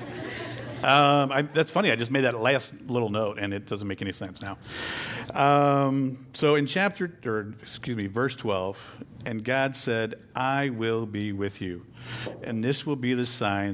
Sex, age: male, 50-69